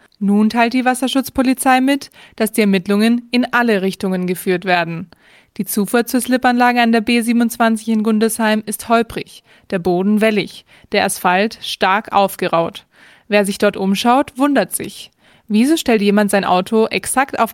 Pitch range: 195-235 Hz